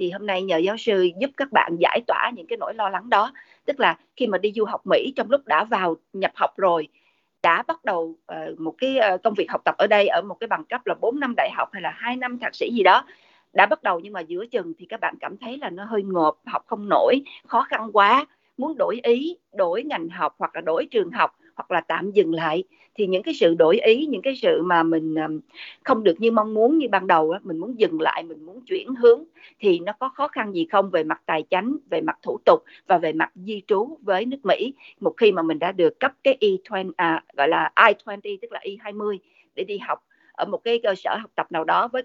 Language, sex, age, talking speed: Vietnamese, female, 50-69, 255 wpm